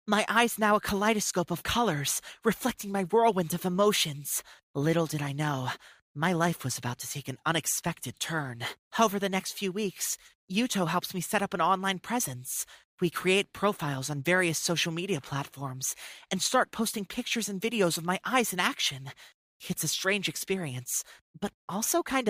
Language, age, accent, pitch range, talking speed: English, 30-49, American, 160-230 Hz, 170 wpm